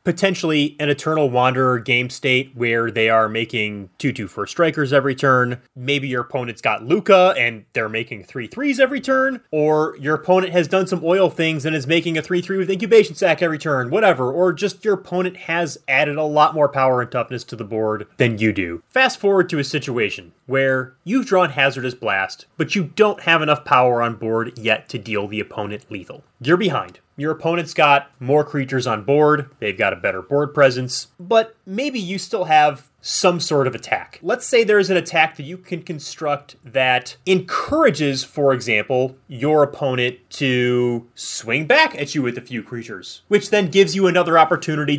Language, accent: English, American